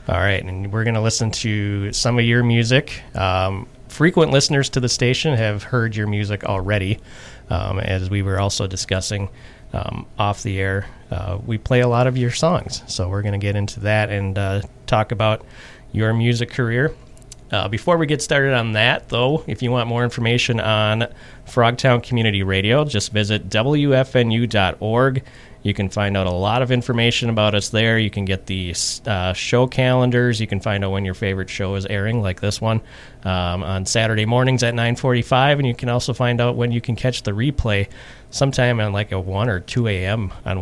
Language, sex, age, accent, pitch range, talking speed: English, male, 30-49, American, 100-125 Hz, 195 wpm